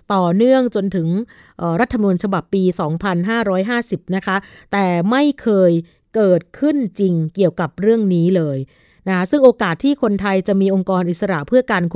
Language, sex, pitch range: Thai, female, 180-225 Hz